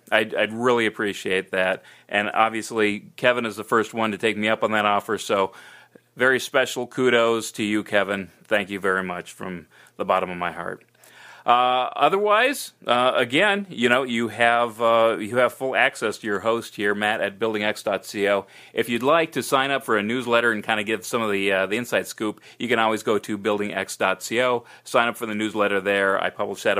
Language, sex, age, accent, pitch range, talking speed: English, male, 30-49, American, 100-120 Hz, 205 wpm